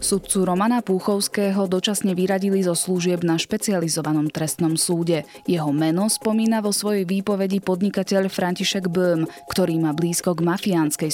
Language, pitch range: Slovak, 160-195 Hz